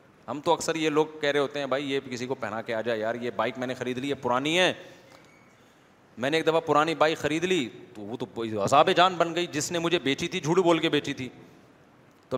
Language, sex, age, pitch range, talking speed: Urdu, male, 30-49, 130-165 Hz, 255 wpm